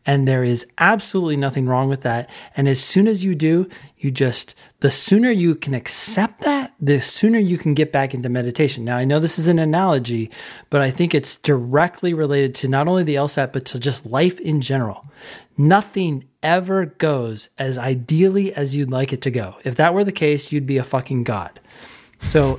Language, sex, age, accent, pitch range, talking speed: English, male, 30-49, American, 130-170 Hz, 200 wpm